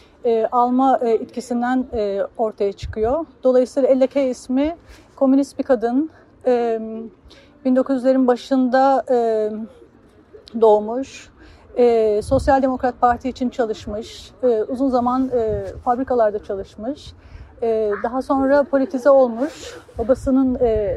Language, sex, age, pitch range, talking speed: Turkish, female, 40-59, 225-275 Hz, 75 wpm